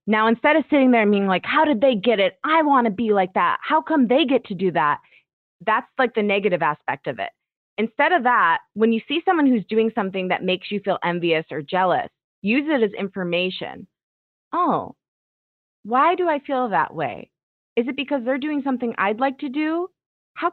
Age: 20-39